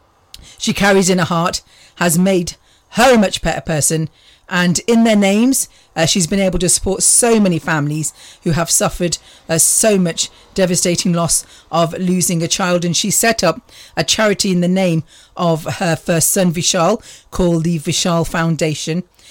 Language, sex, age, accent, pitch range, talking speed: English, female, 40-59, British, 170-200 Hz, 170 wpm